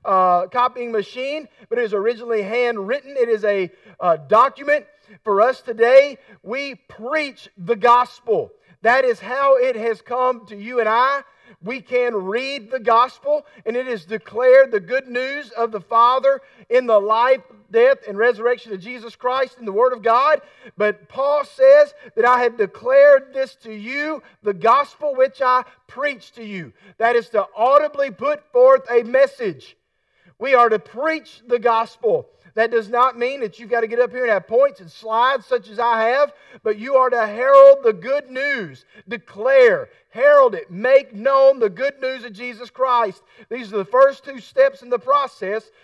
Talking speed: 180 wpm